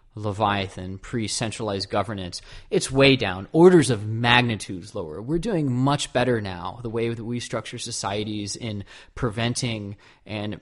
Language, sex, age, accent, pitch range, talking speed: English, male, 20-39, American, 105-135 Hz, 135 wpm